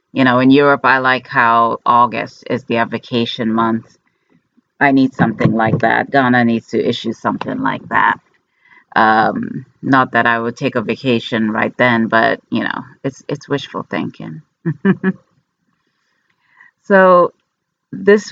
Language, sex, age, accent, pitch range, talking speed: English, female, 30-49, American, 115-140 Hz, 140 wpm